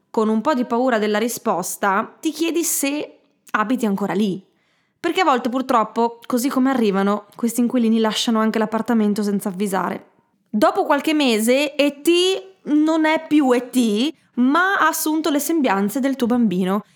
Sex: female